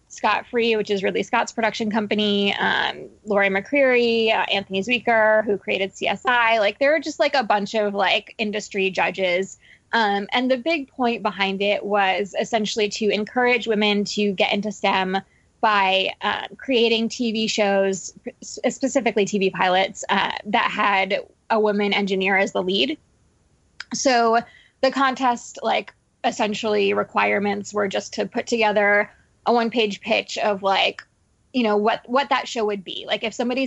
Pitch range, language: 195-235 Hz, English